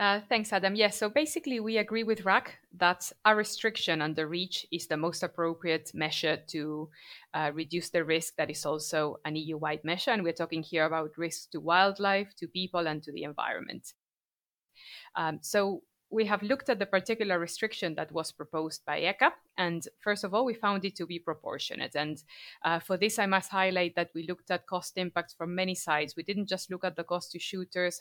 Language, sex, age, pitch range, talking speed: English, female, 30-49, 160-200 Hz, 205 wpm